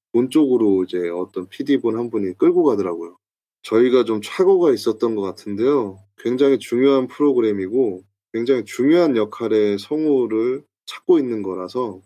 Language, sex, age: Korean, male, 20-39